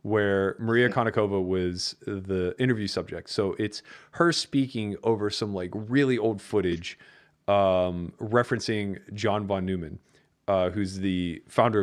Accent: American